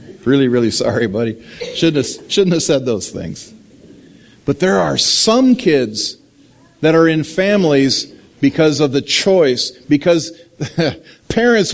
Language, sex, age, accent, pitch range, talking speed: English, male, 50-69, American, 125-180 Hz, 135 wpm